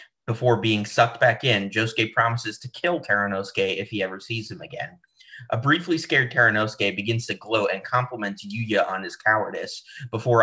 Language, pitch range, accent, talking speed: English, 105-130 Hz, American, 175 wpm